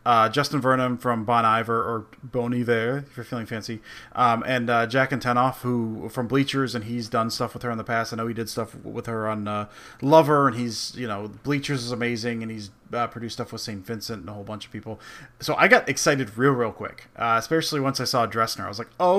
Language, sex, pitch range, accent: English, male, 115-130 Hz, American